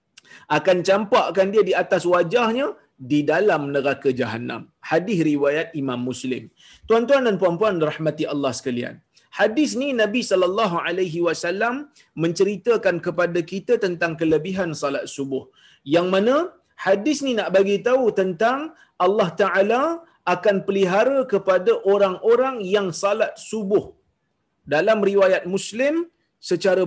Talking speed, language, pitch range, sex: 120 wpm, Malayalam, 170-255 Hz, male